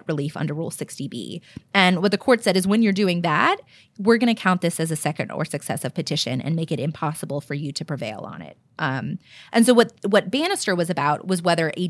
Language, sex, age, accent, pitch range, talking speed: English, female, 20-39, American, 160-220 Hz, 230 wpm